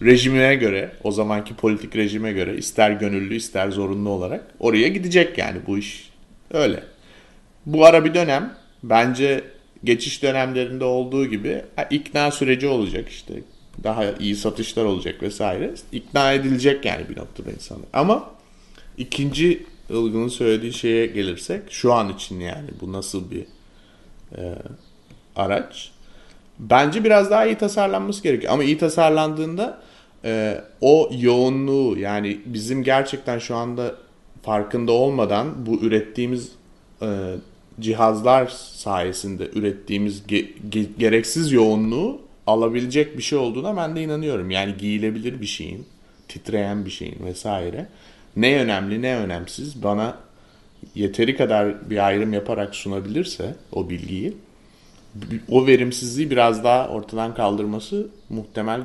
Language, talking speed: Turkish, 125 wpm